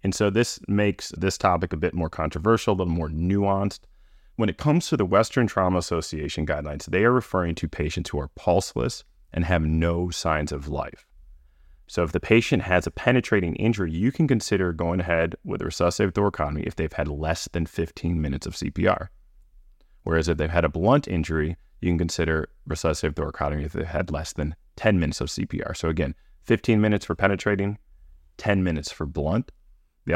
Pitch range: 75-100 Hz